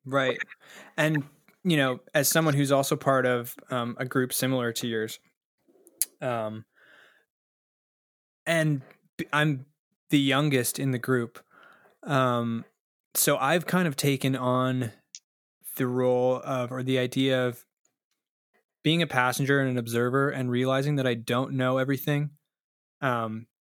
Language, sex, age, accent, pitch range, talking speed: English, male, 20-39, American, 125-140 Hz, 130 wpm